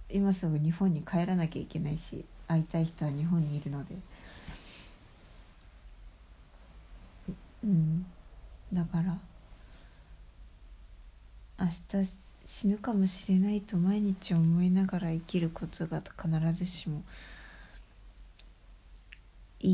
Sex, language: female, Japanese